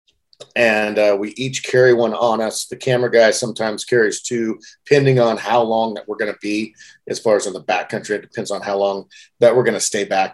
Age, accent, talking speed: 40-59, American, 230 wpm